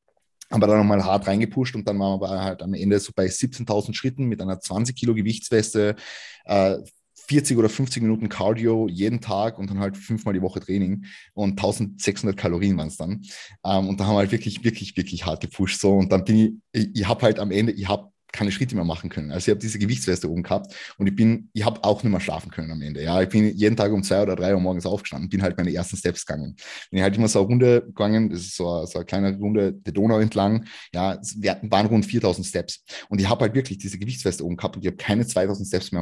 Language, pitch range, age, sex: German, 95-110 Hz, 20-39, male